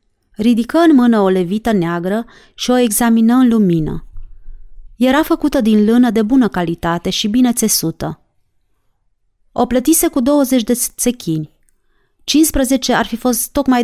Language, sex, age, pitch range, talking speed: Romanian, female, 30-49, 180-245 Hz, 140 wpm